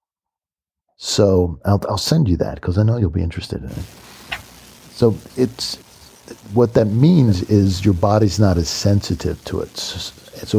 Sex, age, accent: male, 50-69, American